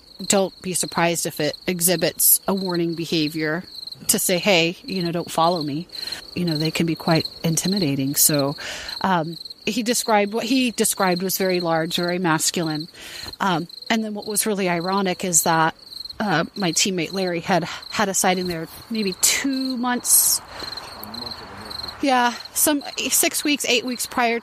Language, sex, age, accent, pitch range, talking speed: English, female, 30-49, American, 170-220 Hz, 155 wpm